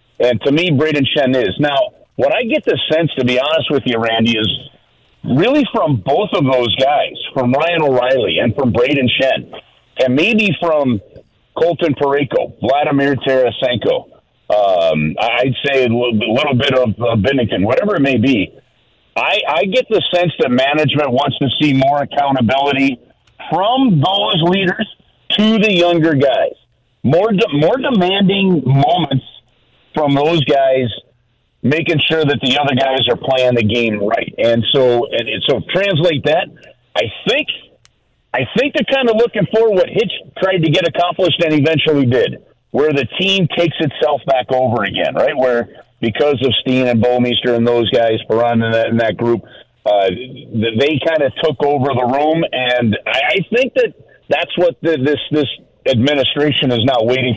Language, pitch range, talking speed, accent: English, 120-165 Hz, 170 wpm, American